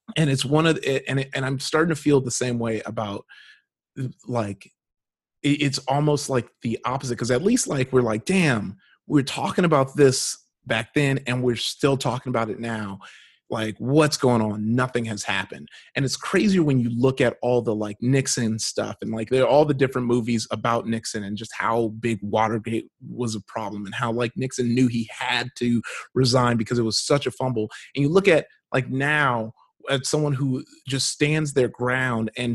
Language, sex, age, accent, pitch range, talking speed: English, male, 30-49, American, 115-145 Hz, 195 wpm